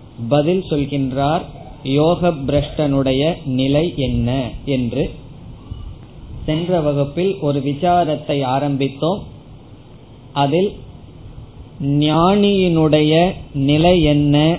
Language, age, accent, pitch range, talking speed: Tamil, 20-39, native, 135-165 Hz, 50 wpm